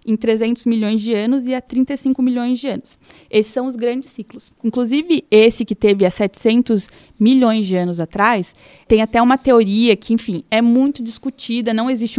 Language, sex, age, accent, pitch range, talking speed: Portuguese, female, 20-39, Brazilian, 215-265 Hz, 180 wpm